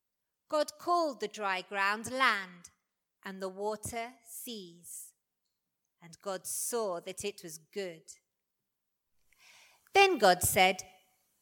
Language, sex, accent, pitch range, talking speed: English, female, British, 195-260 Hz, 105 wpm